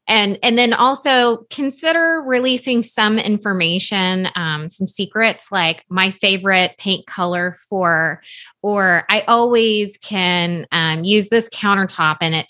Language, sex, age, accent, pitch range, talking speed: English, female, 20-39, American, 185-230 Hz, 130 wpm